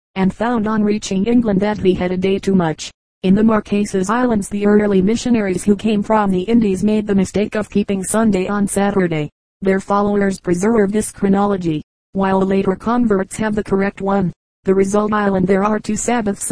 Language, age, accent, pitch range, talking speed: English, 40-59, American, 190-210 Hz, 185 wpm